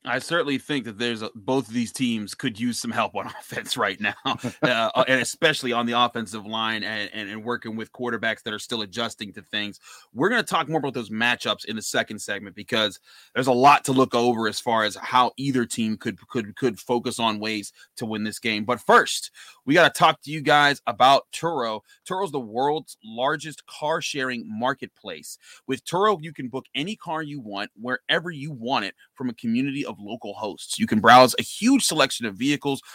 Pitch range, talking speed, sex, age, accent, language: 115-160 Hz, 215 wpm, male, 30-49, American, English